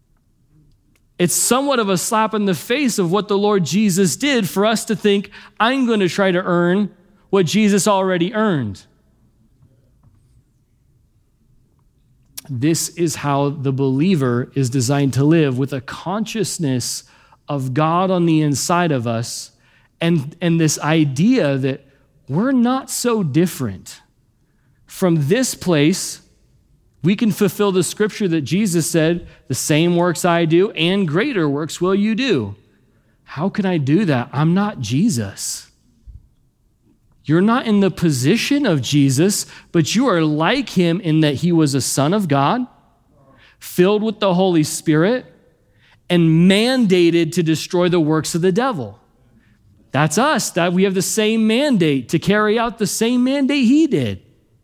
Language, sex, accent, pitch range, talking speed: English, male, American, 135-200 Hz, 150 wpm